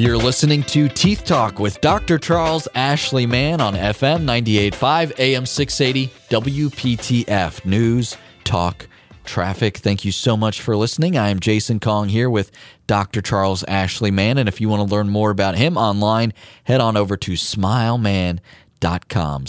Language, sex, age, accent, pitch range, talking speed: English, male, 30-49, American, 95-125 Hz, 155 wpm